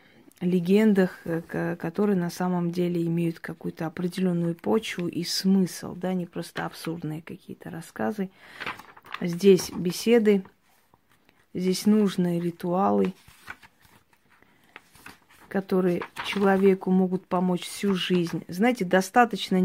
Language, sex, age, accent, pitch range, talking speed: Russian, female, 20-39, native, 170-195 Hz, 90 wpm